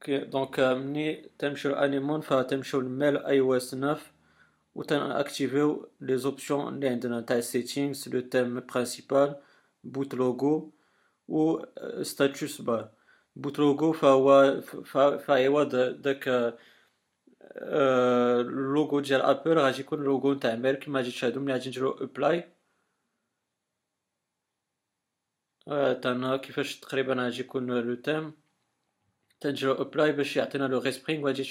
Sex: male